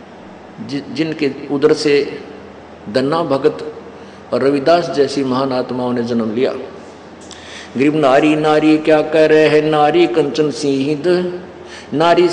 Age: 50-69